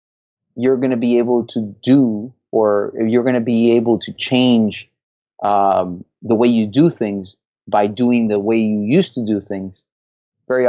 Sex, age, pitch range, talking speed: male, 30-49, 100-125 Hz, 180 wpm